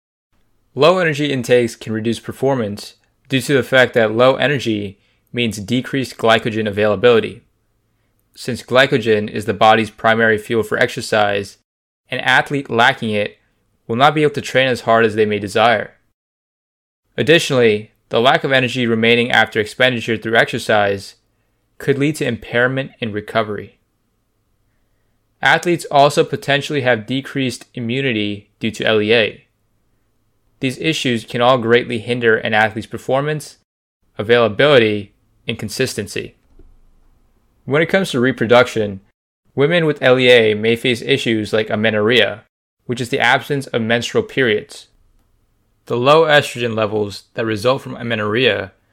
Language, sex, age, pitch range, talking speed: English, male, 20-39, 105-130 Hz, 130 wpm